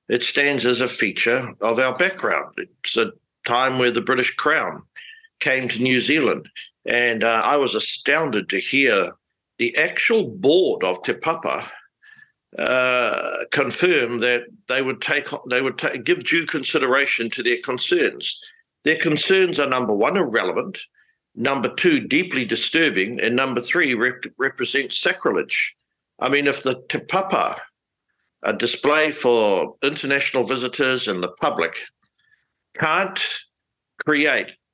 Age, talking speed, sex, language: 60-79, 135 wpm, male, English